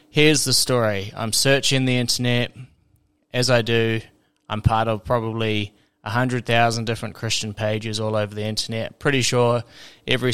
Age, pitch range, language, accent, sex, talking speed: 20-39, 105-120 Hz, English, Australian, male, 155 wpm